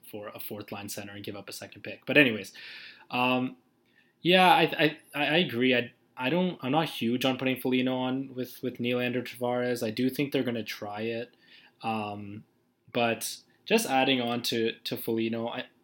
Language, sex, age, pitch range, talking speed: English, male, 20-39, 110-130 Hz, 180 wpm